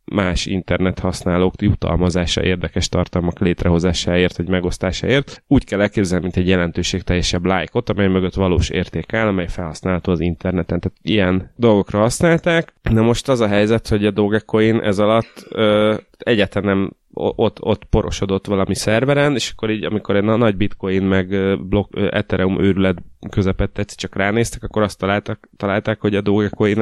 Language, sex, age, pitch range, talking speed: Hungarian, male, 20-39, 95-105 Hz, 155 wpm